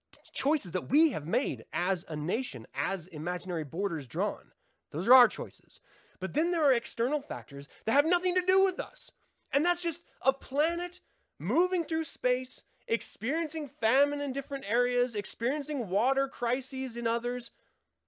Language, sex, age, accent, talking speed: English, male, 30-49, American, 155 wpm